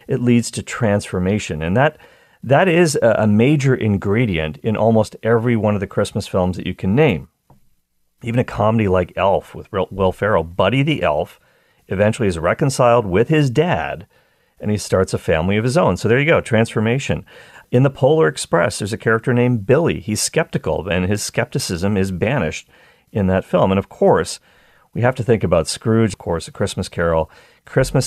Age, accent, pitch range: 40-59, American, 95-120 Hz